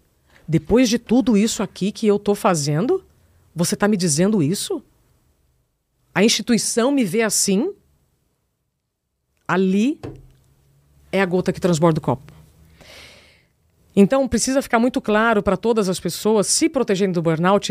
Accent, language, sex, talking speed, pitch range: Brazilian, Portuguese, female, 135 wpm, 160-215 Hz